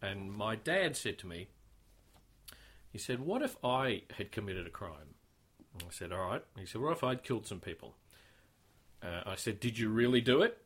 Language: English